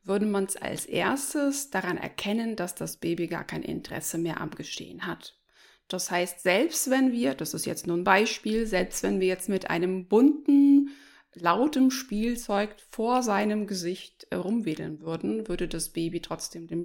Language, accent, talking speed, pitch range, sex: German, German, 165 wpm, 175-245 Hz, female